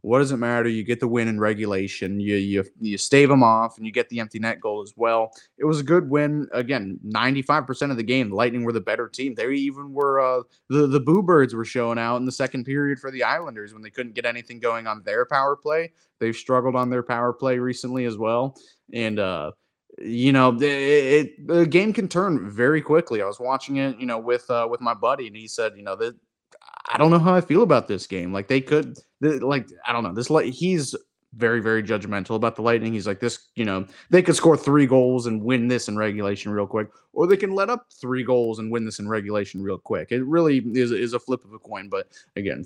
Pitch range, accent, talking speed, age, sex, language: 110-140 Hz, American, 250 wpm, 30-49, male, English